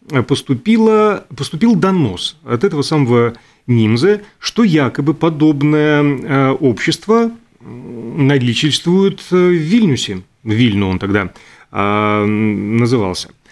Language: Russian